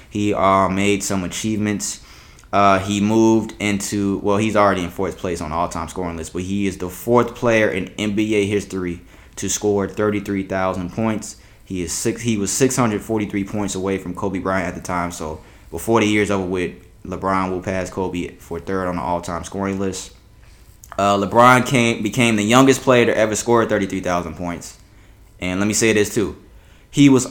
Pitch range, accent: 95-120 Hz, American